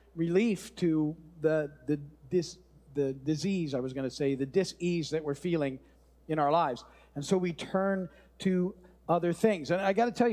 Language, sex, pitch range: English, male, 175-240 Hz